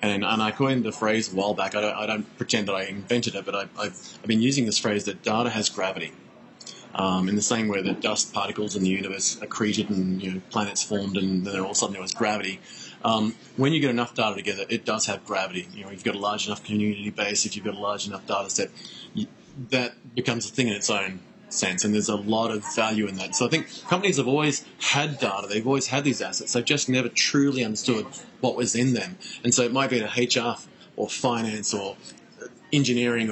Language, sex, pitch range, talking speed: English, male, 105-125 Hz, 240 wpm